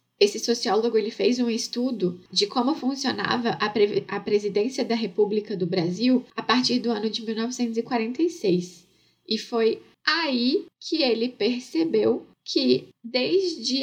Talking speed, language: 130 wpm, Portuguese